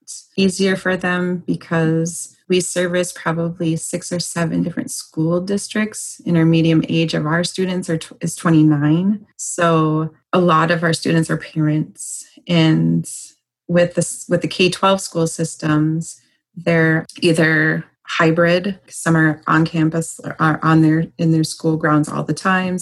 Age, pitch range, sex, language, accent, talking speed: 30-49, 155-175 Hz, female, English, American, 155 wpm